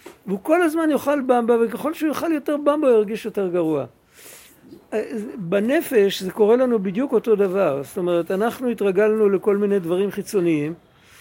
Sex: male